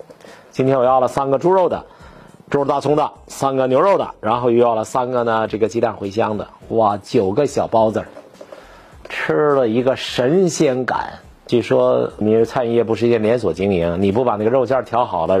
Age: 50-69